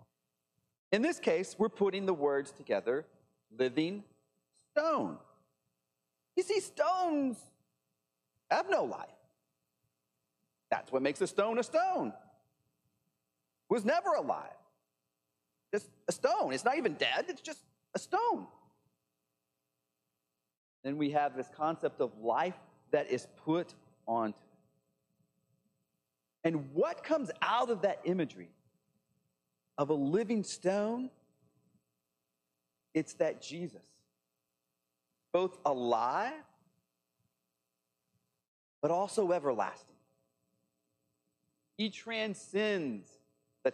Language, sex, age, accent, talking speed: English, male, 40-59, American, 95 wpm